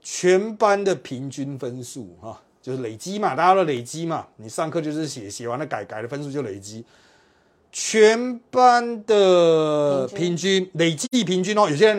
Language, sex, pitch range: Chinese, male, 115-165 Hz